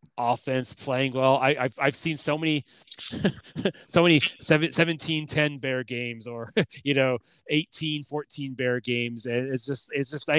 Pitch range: 115-145 Hz